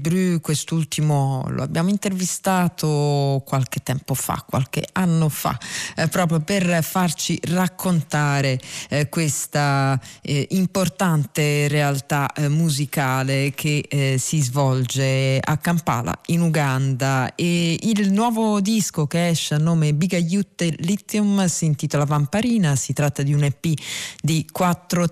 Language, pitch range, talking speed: Italian, 140-175 Hz, 120 wpm